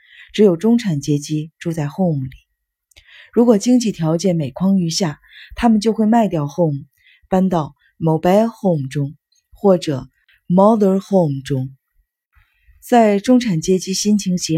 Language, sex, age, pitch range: Chinese, female, 20-39, 150-210 Hz